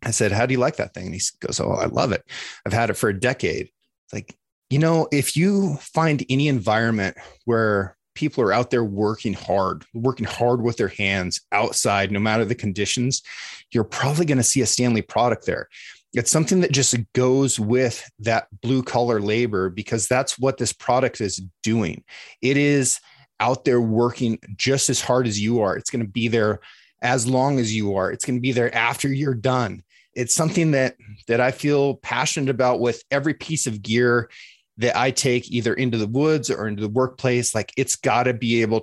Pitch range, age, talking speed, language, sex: 110-130 Hz, 30-49, 200 wpm, English, male